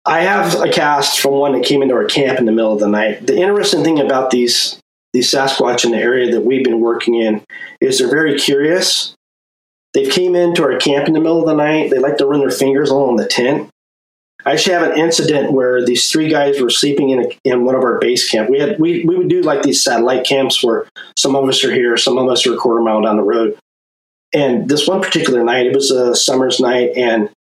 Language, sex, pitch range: English, male, 120-155 Hz